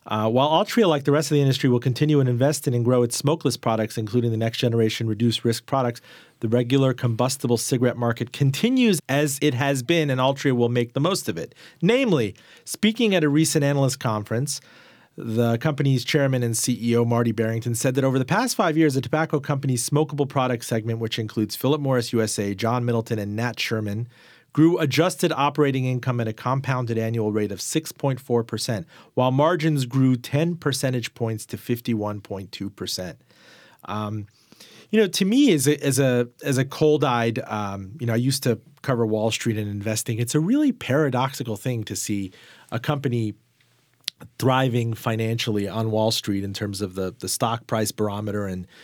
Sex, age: male, 40-59